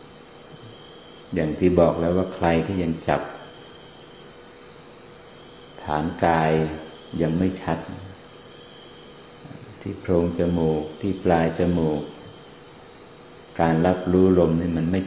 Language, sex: Thai, male